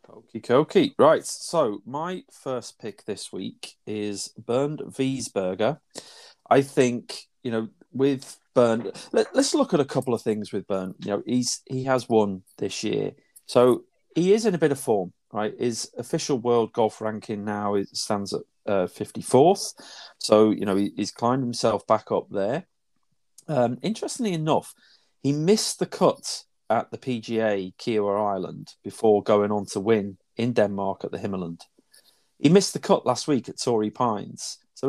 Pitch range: 105-130 Hz